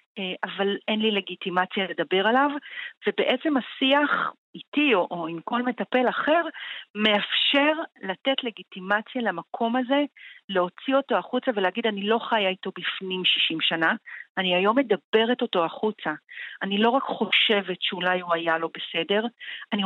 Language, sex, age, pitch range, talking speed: Hebrew, female, 40-59, 190-235 Hz, 140 wpm